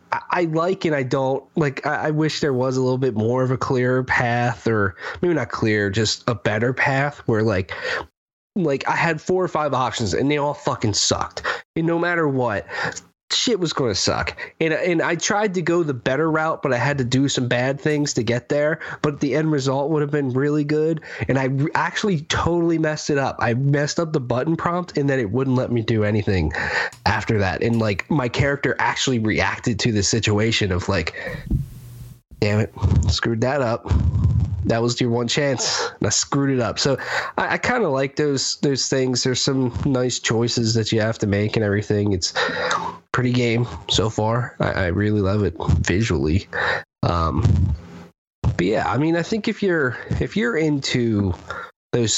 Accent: American